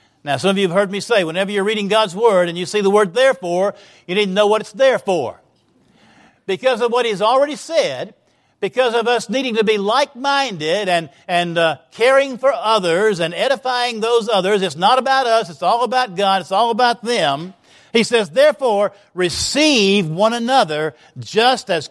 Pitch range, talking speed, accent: 155-215 Hz, 190 wpm, American